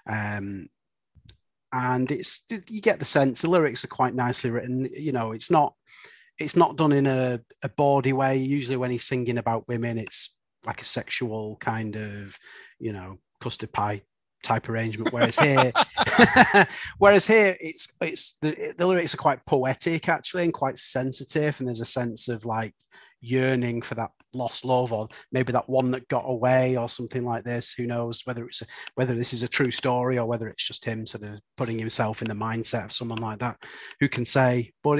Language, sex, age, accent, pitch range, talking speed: English, male, 30-49, British, 115-140 Hz, 190 wpm